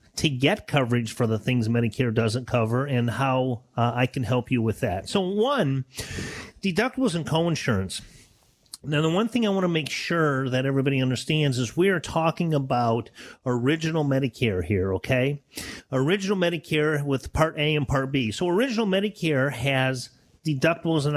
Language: English